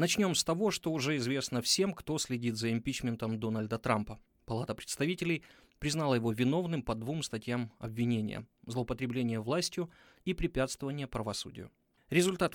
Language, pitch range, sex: Ukrainian, 115-155 Hz, male